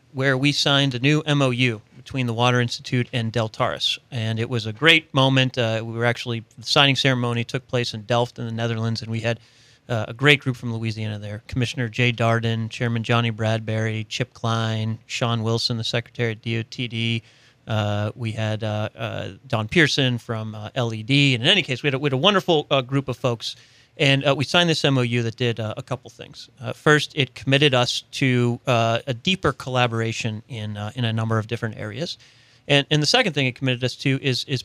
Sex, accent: male, American